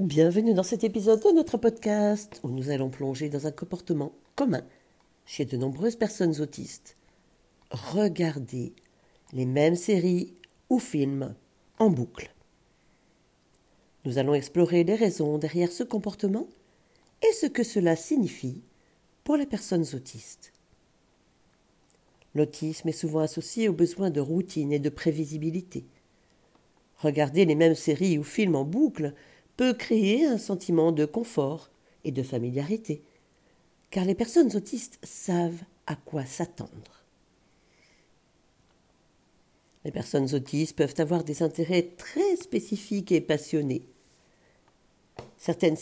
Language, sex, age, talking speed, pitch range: French, female, 40-59, 120 wpm, 150-205 Hz